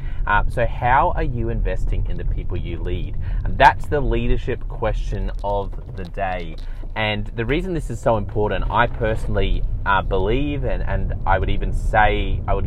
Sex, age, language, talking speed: male, 20-39, English, 180 wpm